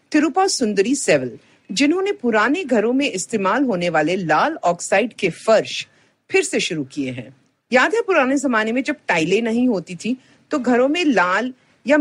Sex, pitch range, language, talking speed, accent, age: female, 180-285 Hz, Hindi, 85 wpm, native, 50-69